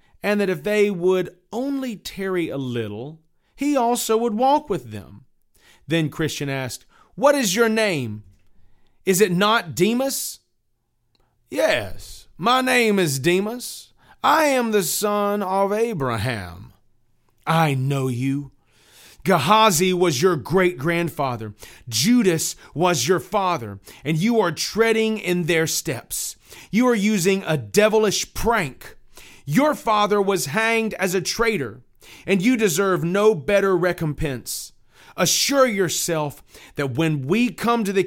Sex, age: male, 30-49